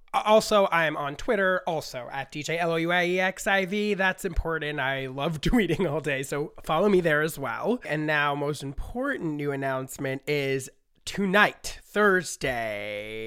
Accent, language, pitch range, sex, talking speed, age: American, English, 140-195 Hz, male, 130 wpm, 30-49